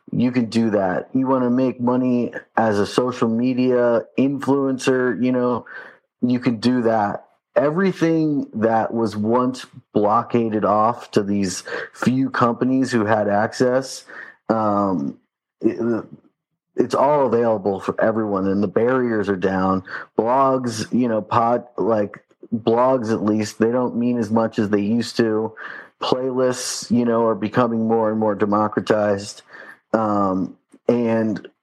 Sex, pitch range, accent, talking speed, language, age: male, 105-125 Hz, American, 135 wpm, English, 30-49